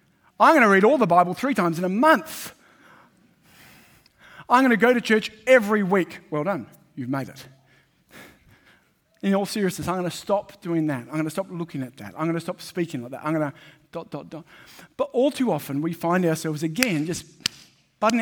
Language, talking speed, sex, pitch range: English, 210 wpm, male, 155-205 Hz